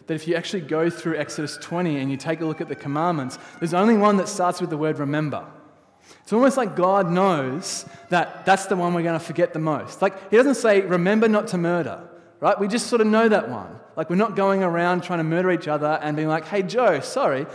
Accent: Australian